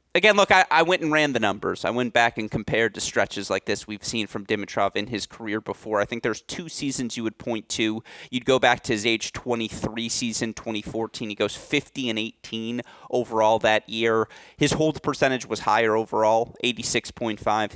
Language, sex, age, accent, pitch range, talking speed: English, male, 30-49, American, 105-125 Hz, 200 wpm